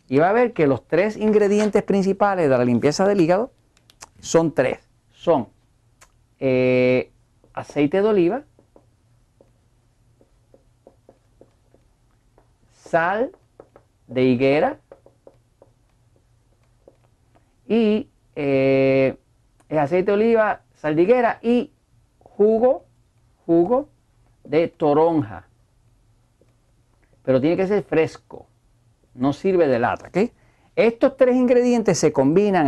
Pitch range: 120-175 Hz